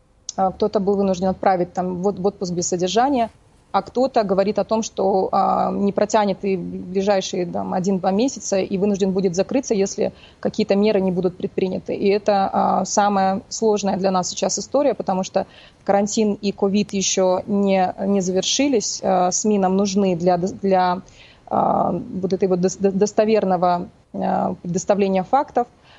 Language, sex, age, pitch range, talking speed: Russian, female, 30-49, 190-210 Hz, 145 wpm